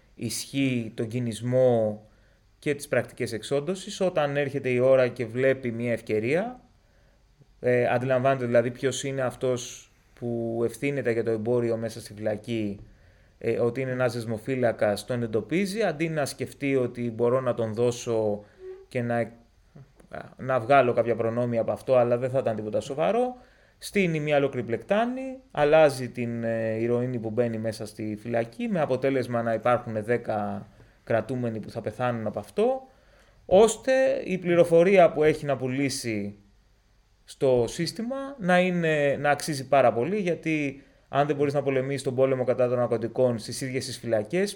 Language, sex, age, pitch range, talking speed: Greek, male, 30-49, 115-140 Hz, 150 wpm